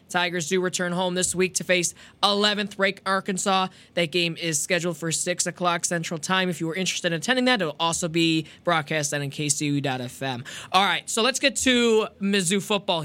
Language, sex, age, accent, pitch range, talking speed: English, male, 20-39, American, 160-205 Hz, 195 wpm